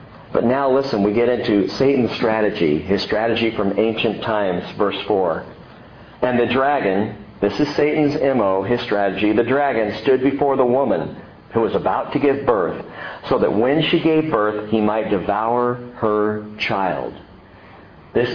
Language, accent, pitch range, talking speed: English, American, 120-205 Hz, 155 wpm